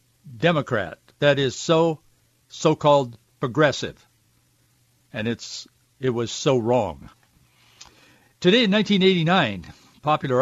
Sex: male